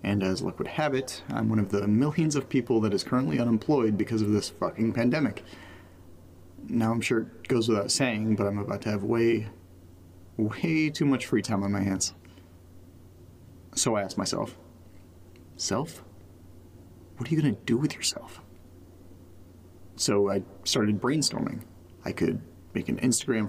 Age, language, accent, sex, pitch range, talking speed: 30-49, English, American, male, 90-120 Hz, 165 wpm